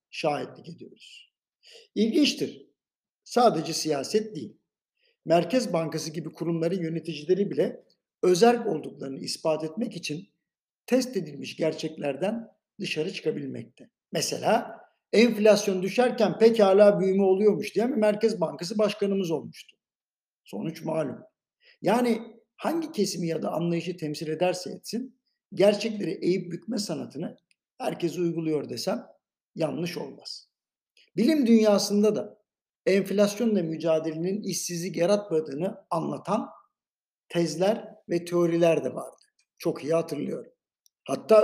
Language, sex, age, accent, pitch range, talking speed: Turkish, male, 60-79, native, 165-215 Hz, 100 wpm